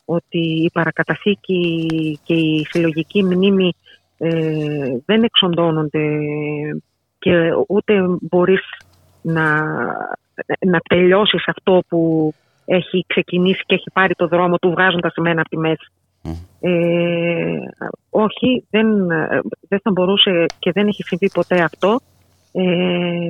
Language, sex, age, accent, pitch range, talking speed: Greek, female, 30-49, native, 165-195 Hz, 110 wpm